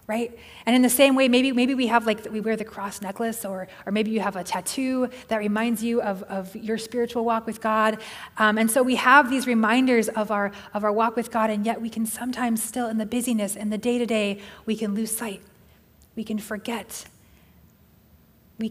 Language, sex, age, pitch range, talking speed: English, female, 30-49, 205-235 Hz, 220 wpm